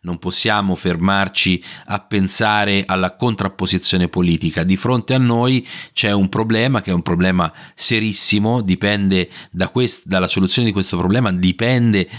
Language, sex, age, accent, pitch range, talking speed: Italian, male, 30-49, native, 90-115 Hz, 145 wpm